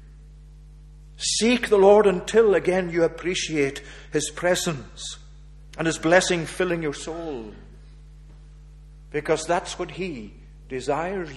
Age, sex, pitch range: 50-69, male, 150-170 Hz